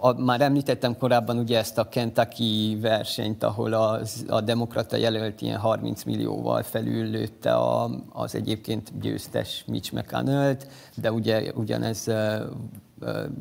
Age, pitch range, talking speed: 30-49, 115-130 Hz, 130 wpm